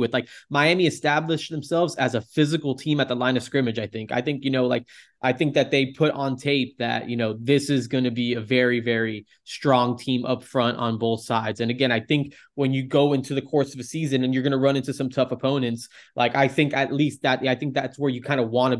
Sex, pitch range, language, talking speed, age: male, 115-130 Hz, English, 260 wpm, 20-39